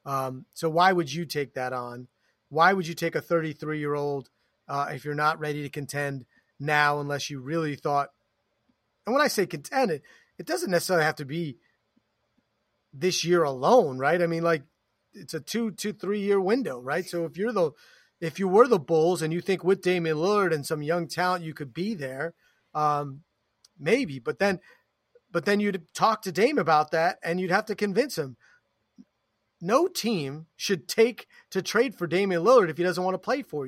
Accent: American